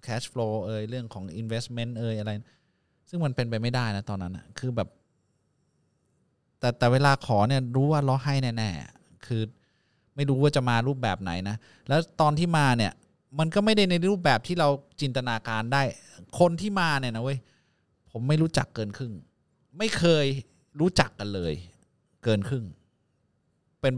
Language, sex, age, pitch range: Thai, male, 20-39, 115-150 Hz